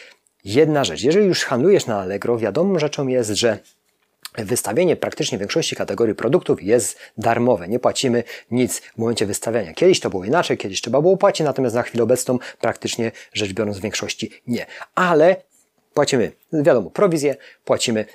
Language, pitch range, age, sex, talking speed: Polish, 115-160 Hz, 30-49, male, 155 wpm